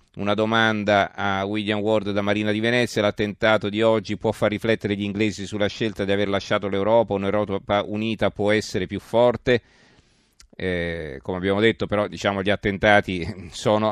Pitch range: 95-110 Hz